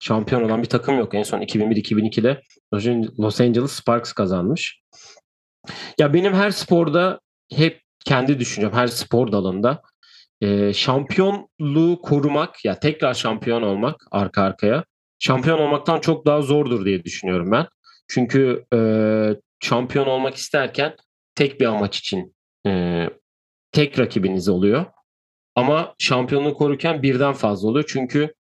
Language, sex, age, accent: Turkish, male, 40-59, native